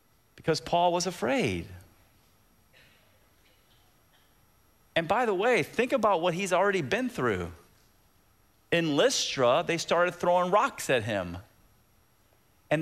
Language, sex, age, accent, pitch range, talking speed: English, male, 40-59, American, 170-245 Hz, 110 wpm